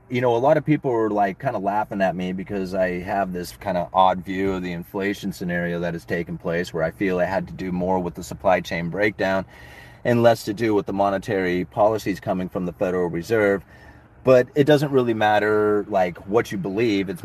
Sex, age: male, 30-49